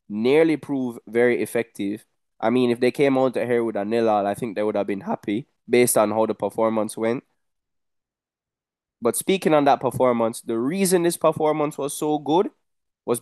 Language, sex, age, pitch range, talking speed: English, male, 20-39, 120-160 Hz, 185 wpm